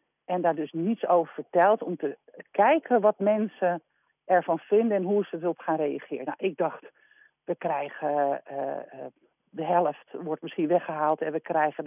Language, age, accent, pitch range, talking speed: Dutch, 50-69, Dutch, 165-230 Hz, 165 wpm